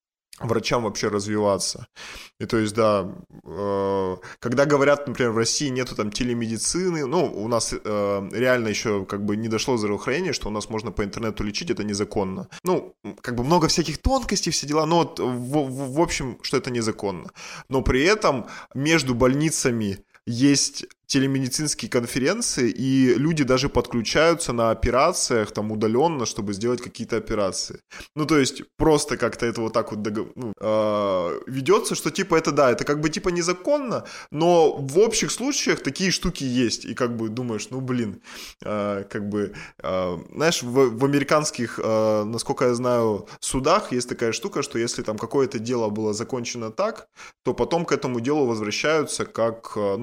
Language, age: Russian, 20-39